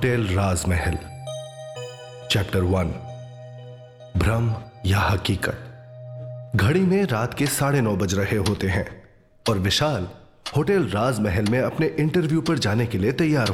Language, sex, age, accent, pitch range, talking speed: Hindi, male, 30-49, native, 100-125 Hz, 130 wpm